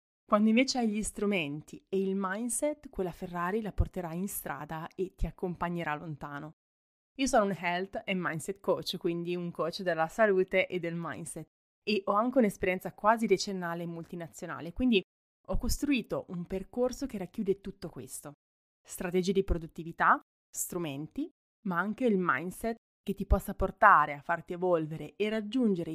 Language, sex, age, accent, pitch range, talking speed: Italian, female, 20-39, native, 170-205 Hz, 155 wpm